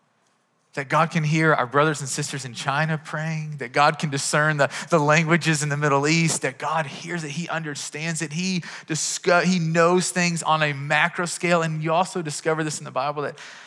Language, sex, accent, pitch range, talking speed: English, male, American, 140-165 Hz, 205 wpm